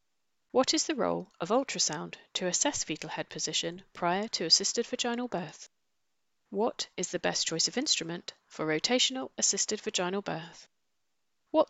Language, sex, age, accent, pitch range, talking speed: English, female, 30-49, British, 160-215 Hz, 150 wpm